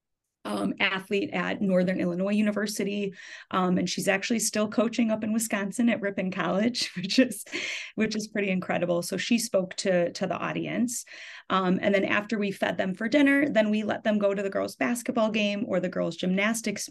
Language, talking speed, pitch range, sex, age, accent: English, 190 wpm, 180-215 Hz, female, 30-49, American